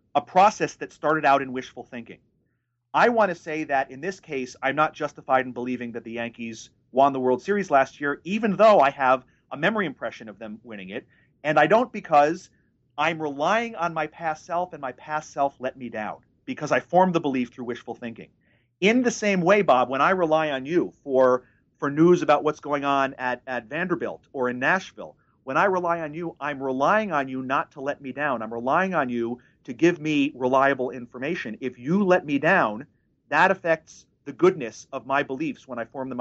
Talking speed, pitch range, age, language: 210 wpm, 125-165 Hz, 40-59, English